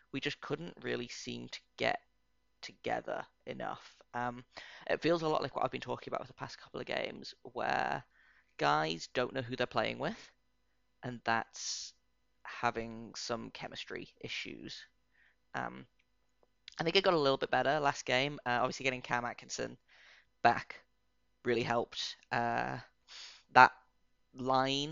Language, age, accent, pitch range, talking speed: English, 10-29, British, 115-130 Hz, 150 wpm